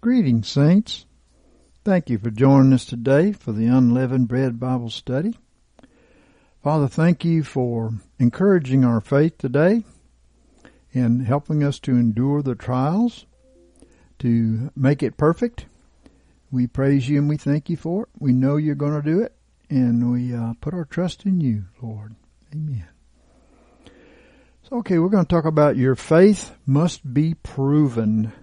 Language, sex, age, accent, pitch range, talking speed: English, male, 60-79, American, 120-155 Hz, 150 wpm